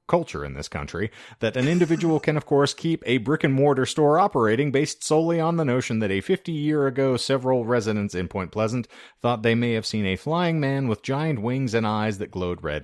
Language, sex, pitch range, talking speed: English, male, 90-130 Hz, 205 wpm